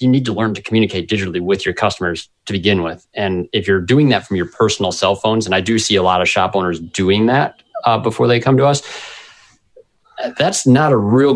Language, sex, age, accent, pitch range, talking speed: English, male, 30-49, American, 90-110 Hz, 230 wpm